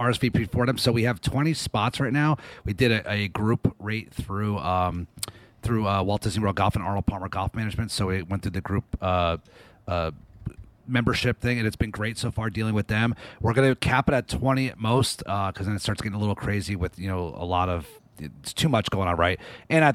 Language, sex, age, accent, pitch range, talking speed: English, male, 30-49, American, 100-120 Hz, 240 wpm